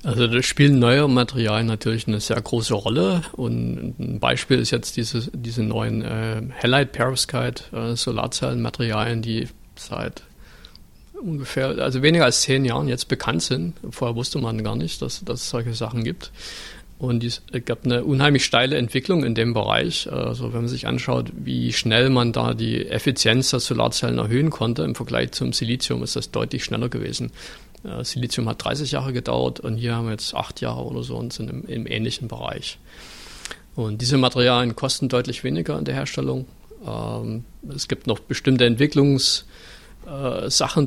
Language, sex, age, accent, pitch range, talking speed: German, male, 50-69, German, 110-130 Hz, 170 wpm